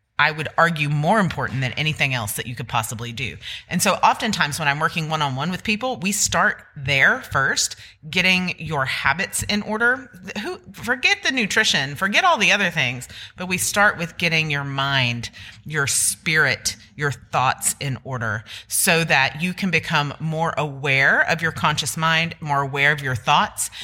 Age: 30-49